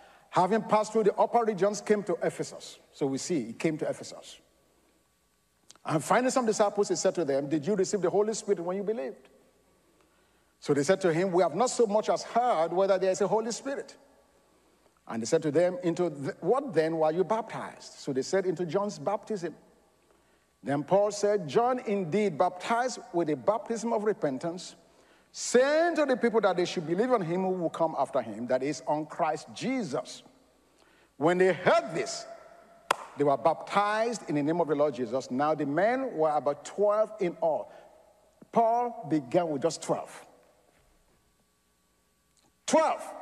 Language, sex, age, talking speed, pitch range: English, male, 50-69, 180 wpm, 155-225 Hz